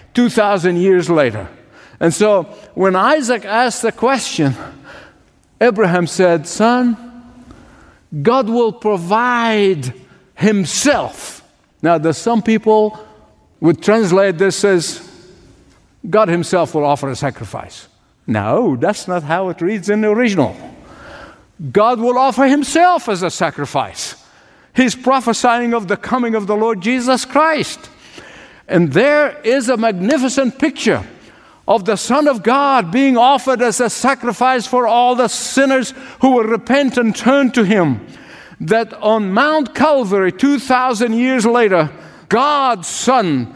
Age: 50-69